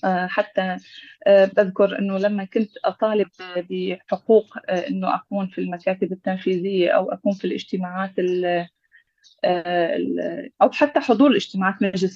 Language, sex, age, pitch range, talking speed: Arabic, female, 30-49, 185-240 Hz, 105 wpm